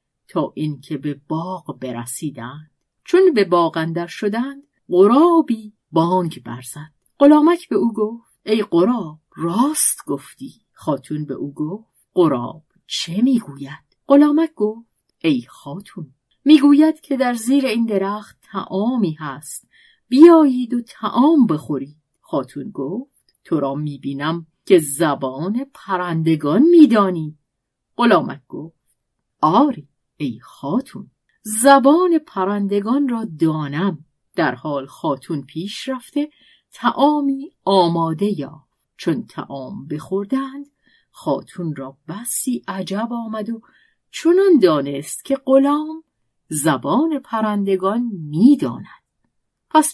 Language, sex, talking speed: Persian, female, 105 wpm